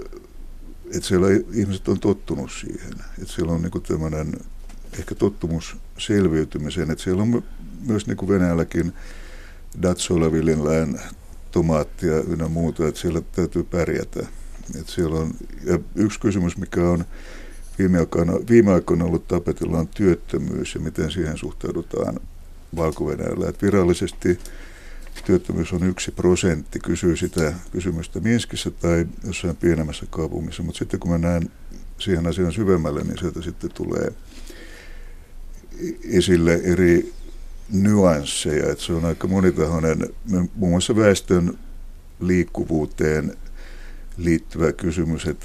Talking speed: 115 wpm